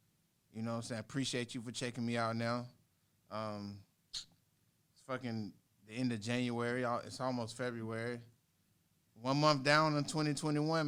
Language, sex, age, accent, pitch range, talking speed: English, male, 20-39, American, 110-130 Hz, 150 wpm